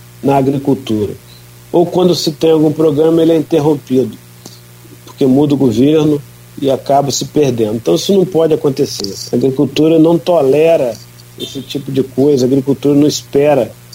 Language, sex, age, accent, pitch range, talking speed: Portuguese, male, 50-69, Brazilian, 115-145 Hz, 155 wpm